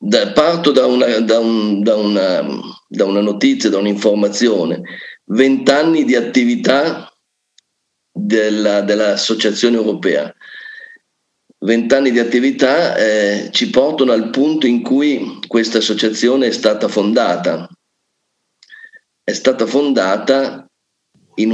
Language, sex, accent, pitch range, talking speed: Italian, male, native, 110-175 Hz, 105 wpm